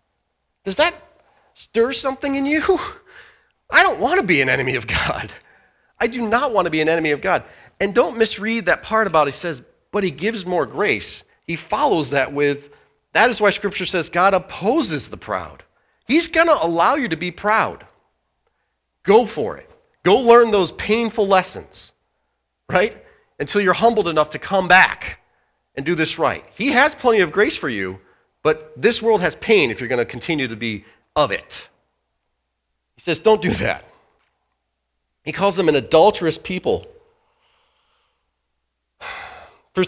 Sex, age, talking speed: male, 40-59, 170 wpm